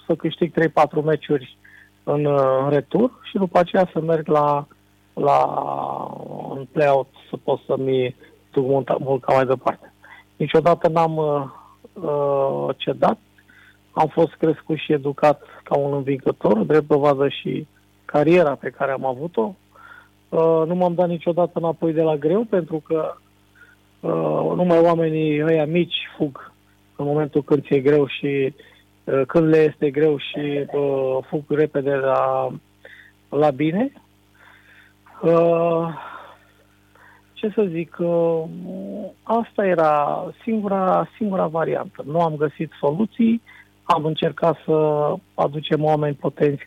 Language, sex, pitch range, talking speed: Romanian, male, 140-170 Hz, 125 wpm